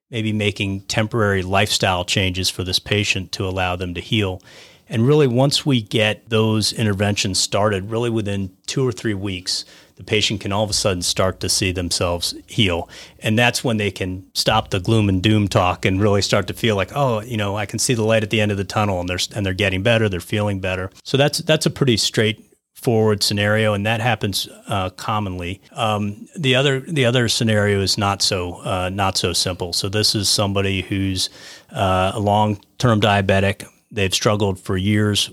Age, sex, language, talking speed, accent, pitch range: 40-59, male, English, 200 wpm, American, 95-110 Hz